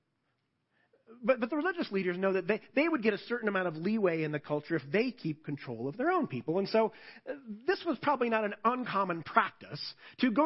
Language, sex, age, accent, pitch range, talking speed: English, male, 40-59, American, 150-225 Hz, 225 wpm